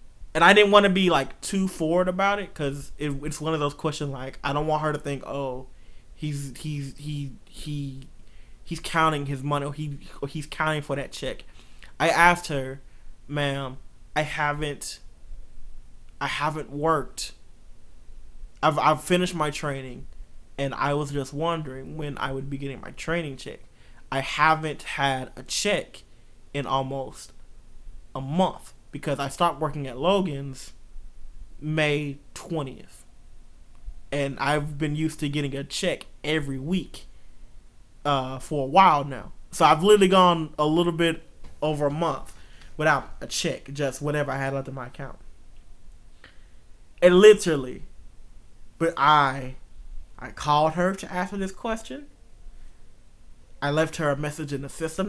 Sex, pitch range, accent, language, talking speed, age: male, 135-160 Hz, American, English, 155 wpm, 20-39